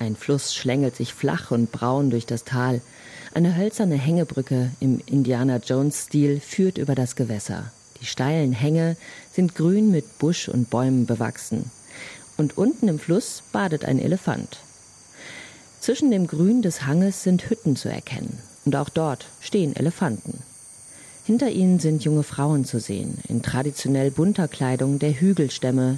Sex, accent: female, German